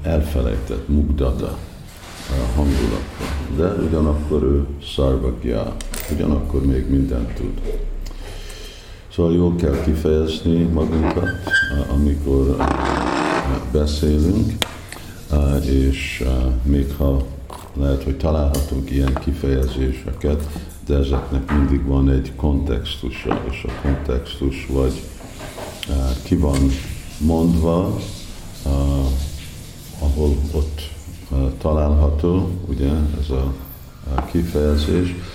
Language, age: Hungarian, 50-69